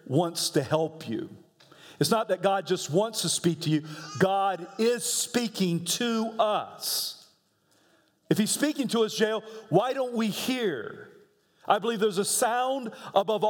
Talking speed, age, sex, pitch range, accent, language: 155 wpm, 50-69, male, 195-265 Hz, American, English